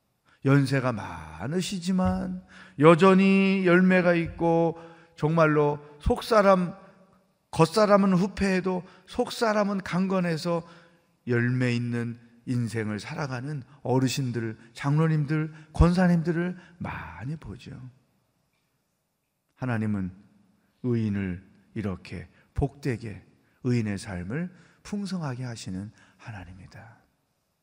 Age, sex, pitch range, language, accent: 40-59, male, 120-180 Hz, Korean, native